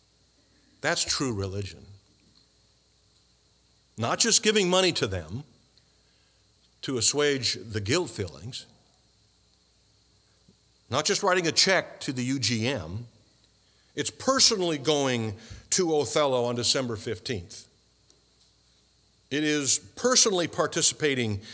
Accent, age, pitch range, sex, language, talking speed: American, 50-69, 105-145 Hz, male, English, 95 wpm